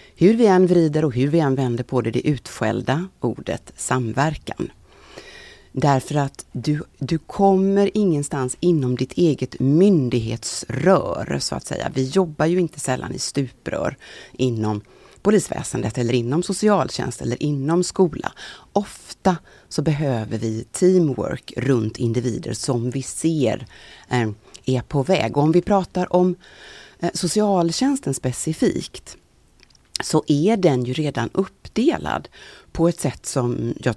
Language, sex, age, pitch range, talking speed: Swedish, female, 30-49, 125-170 Hz, 130 wpm